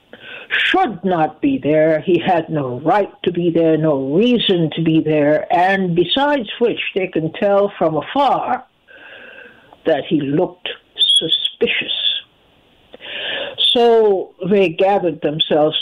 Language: English